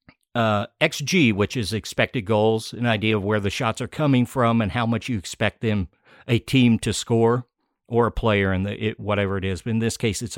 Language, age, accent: English, 50-69, American